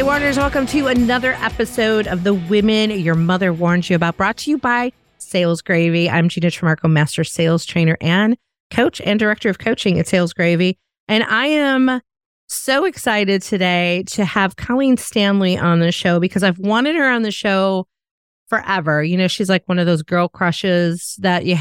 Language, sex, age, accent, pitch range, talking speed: English, female, 30-49, American, 175-220 Hz, 185 wpm